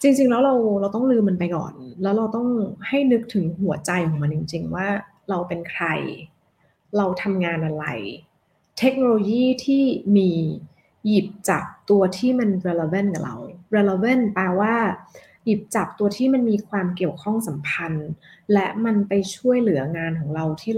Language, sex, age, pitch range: Thai, female, 20-39, 180-235 Hz